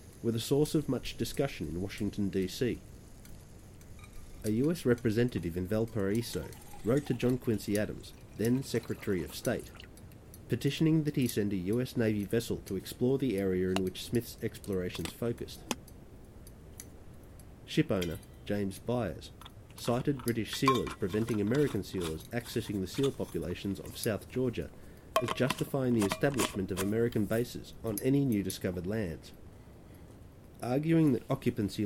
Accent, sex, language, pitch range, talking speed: Australian, male, English, 95-120 Hz, 135 wpm